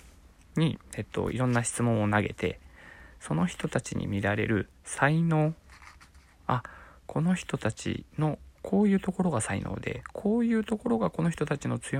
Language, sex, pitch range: Japanese, male, 90-135 Hz